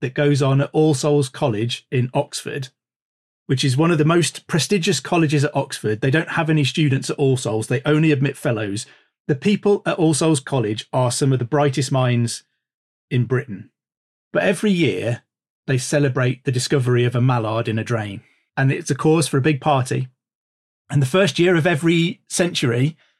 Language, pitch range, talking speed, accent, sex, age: English, 125-150 Hz, 190 wpm, British, male, 30-49